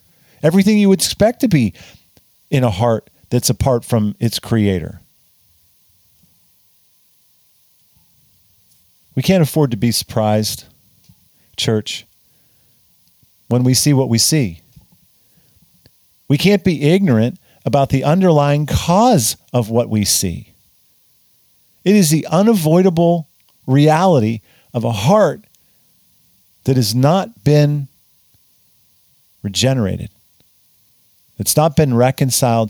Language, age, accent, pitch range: English, 50-69, American, 100-145 Hz